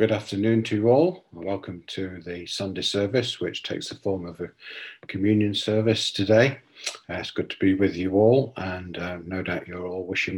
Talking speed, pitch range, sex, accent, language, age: 200 wpm, 95-115 Hz, male, British, English, 50-69